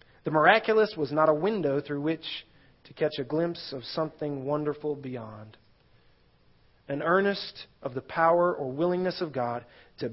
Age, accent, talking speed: 30-49, American, 155 wpm